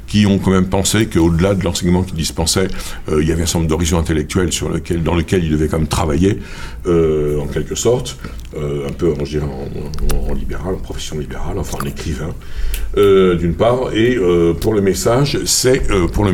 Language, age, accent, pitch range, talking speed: French, 60-79, French, 80-110 Hz, 220 wpm